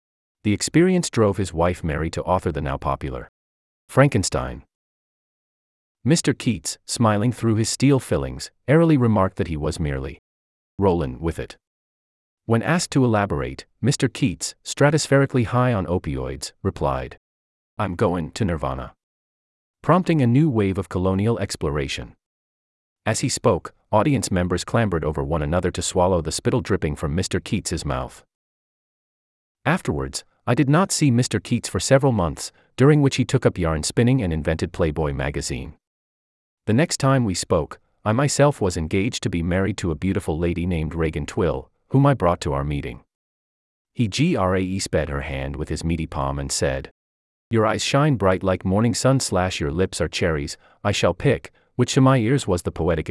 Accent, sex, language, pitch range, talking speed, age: American, male, English, 75-120 Hz, 165 wpm, 30-49